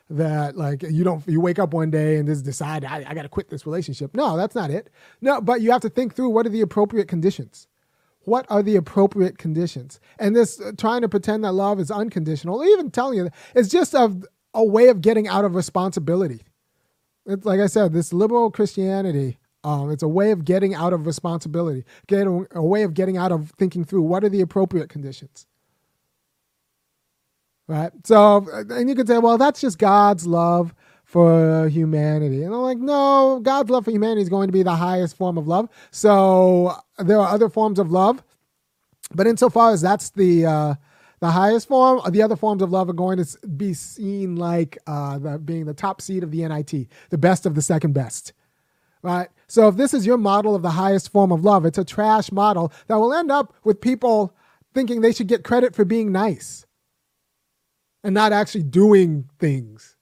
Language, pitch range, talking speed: English, 165-215 Hz, 200 wpm